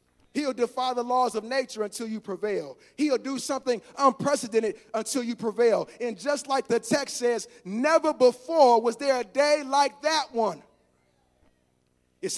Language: English